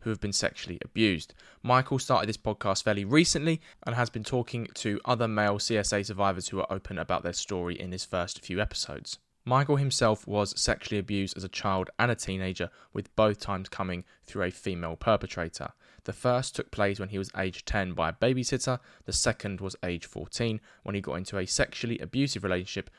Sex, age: male, 20-39